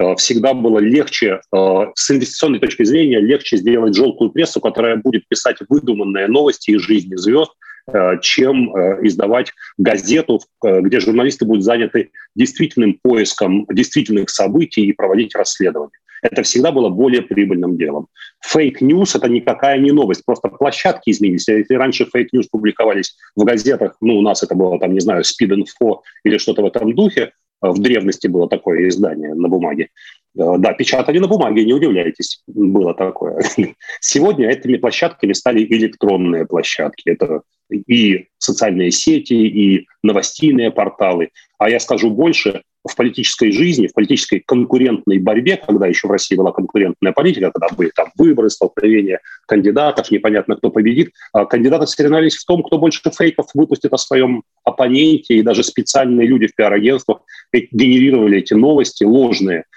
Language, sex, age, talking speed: Russian, male, 30-49, 145 wpm